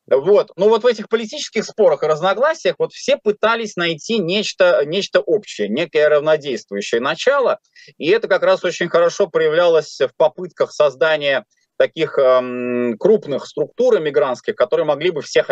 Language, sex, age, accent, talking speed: Russian, male, 30-49, native, 145 wpm